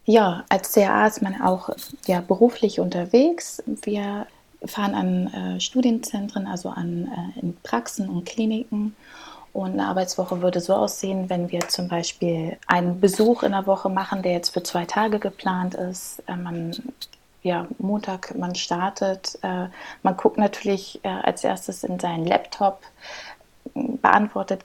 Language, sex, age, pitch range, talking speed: English, female, 30-49, 175-205 Hz, 150 wpm